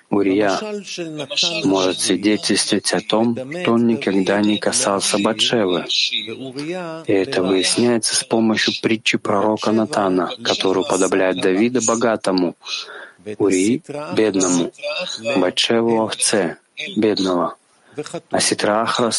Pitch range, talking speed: 100-135 Hz, 105 wpm